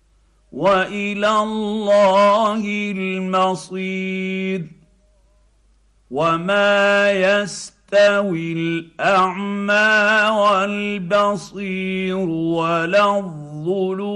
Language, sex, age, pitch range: Arabic, male, 50-69, 165-205 Hz